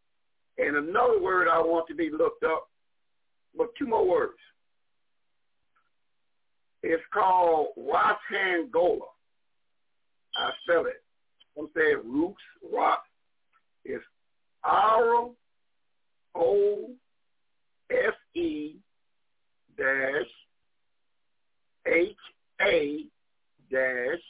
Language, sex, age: English, male, 50-69